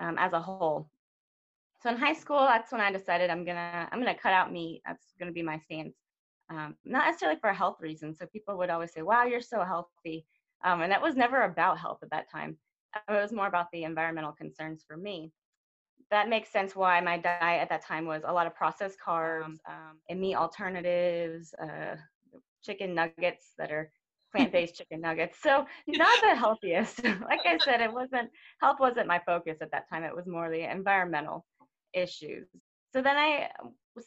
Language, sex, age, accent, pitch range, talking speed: English, female, 20-39, American, 165-220 Hz, 195 wpm